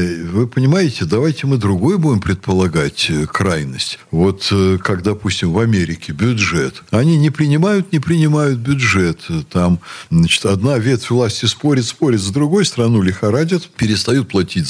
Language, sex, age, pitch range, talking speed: Russian, male, 60-79, 95-145 Hz, 135 wpm